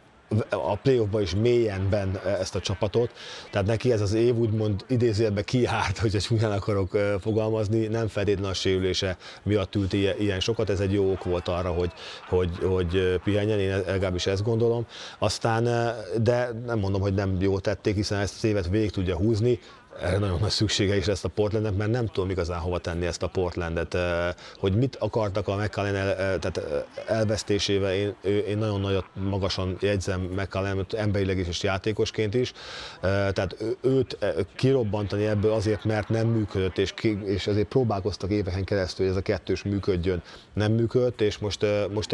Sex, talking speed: male, 170 wpm